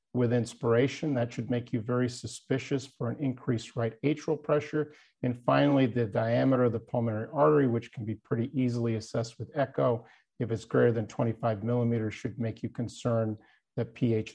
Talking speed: 175 wpm